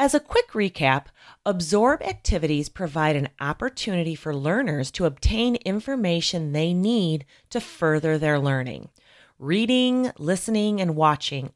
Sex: female